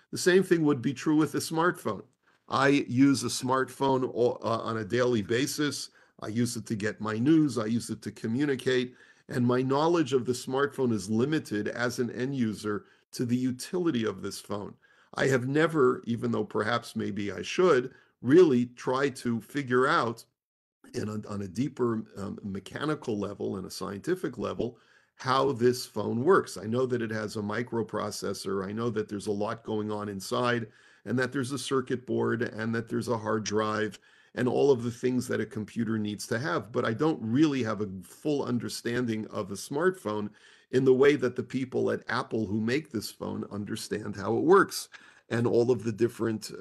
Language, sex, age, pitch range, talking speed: English, male, 50-69, 110-130 Hz, 195 wpm